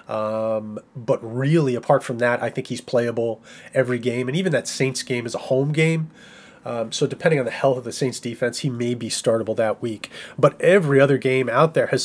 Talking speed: 220 wpm